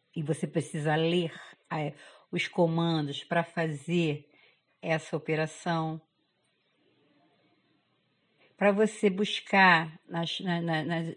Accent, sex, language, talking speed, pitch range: Brazilian, female, Portuguese, 80 wpm, 165-215 Hz